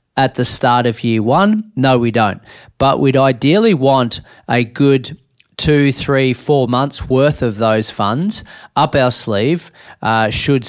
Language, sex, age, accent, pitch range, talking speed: English, male, 40-59, Australian, 110-130 Hz, 155 wpm